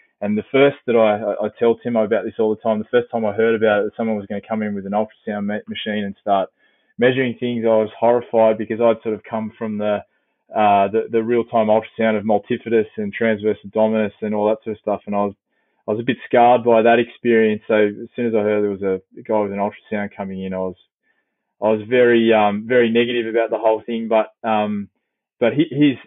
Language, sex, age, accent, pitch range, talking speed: English, male, 20-39, Australian, 105-115 Hz, 245 wpm